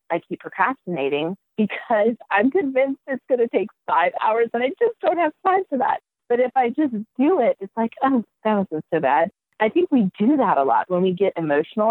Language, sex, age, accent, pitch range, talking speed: English, female, 30-49, American, 160-235 Hz, 220 wpm